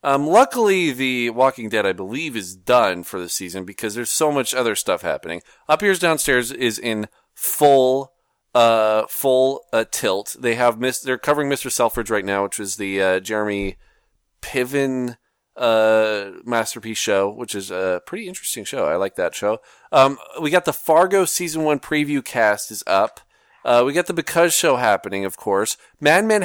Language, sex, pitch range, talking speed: English, male, 115-145 Hz, 175 wpm